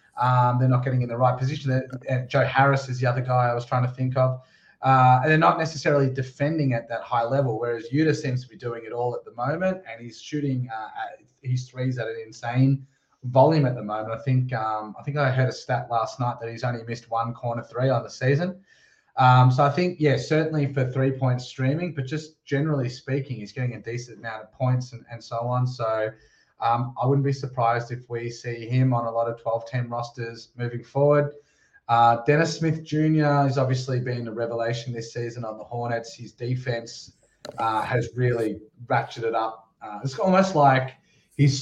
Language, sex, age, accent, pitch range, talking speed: English, male, 30-49, Australian, 115-135 Hz, 210 wpm